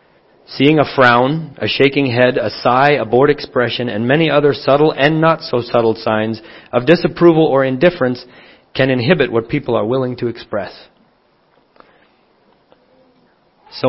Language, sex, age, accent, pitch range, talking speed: English, male, 40-59, American, 125-160 Hz, 145 wpm